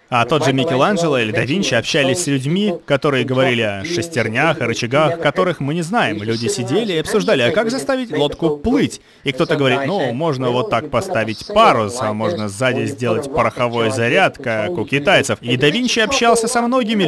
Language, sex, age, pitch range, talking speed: Russian, male, 30-49, 125-180 Hz, 185 wpm